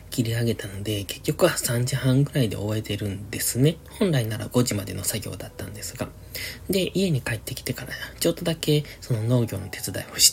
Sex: male